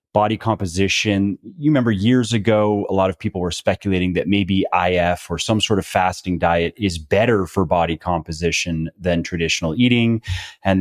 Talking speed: 165 wpm